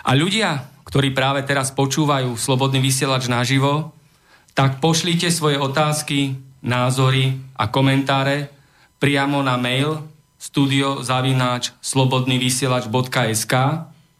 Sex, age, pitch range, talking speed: male, 40-59, 125-145 Hz, 90 wpm